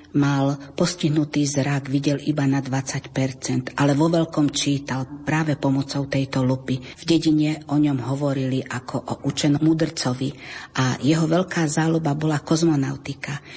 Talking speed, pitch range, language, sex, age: 135 wpm, 140-160 Hz, Slovak, female, 50-69